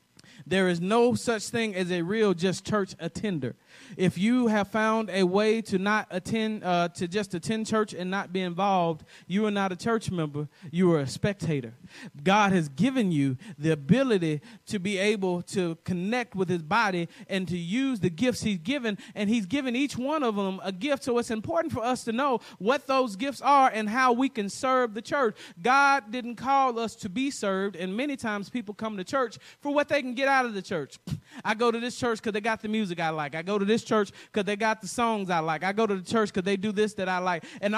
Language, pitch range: English, 195-245 Hz